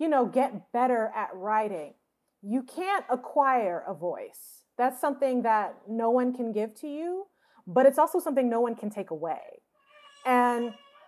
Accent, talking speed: American, 160 wpm